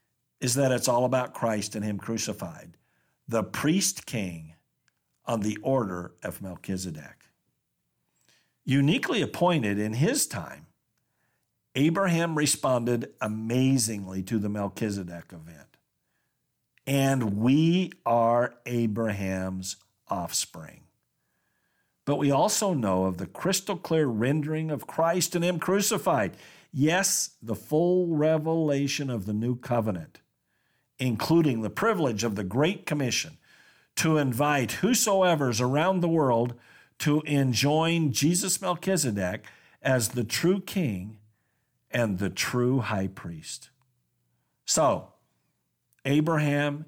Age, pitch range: 50-69, 110-160 Hz